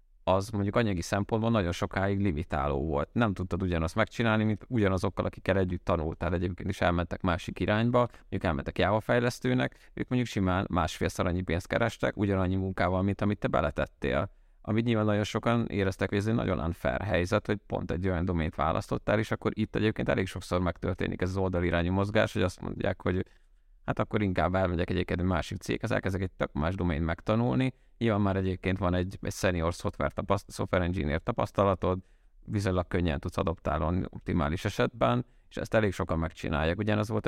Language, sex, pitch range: Hungarian, male, 85-105 Hz